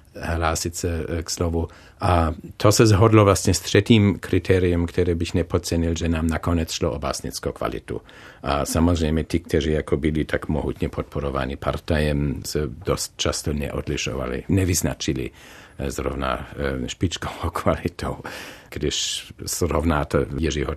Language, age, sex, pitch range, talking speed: Czech, 50-69, male, 80-100 Hz, 125 wpm